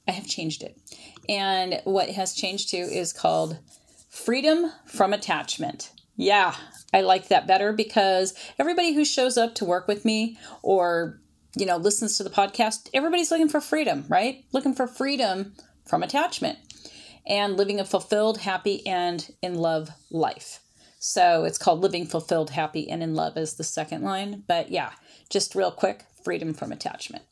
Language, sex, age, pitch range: English, female, 30-49, 180-255 Hz